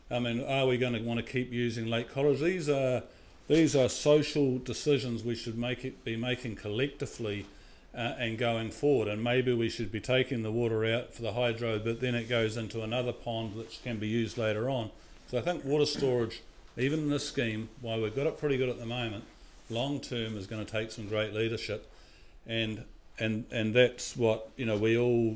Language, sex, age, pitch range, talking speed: English, male, 50-69, 110-130 Hz, 215 wpm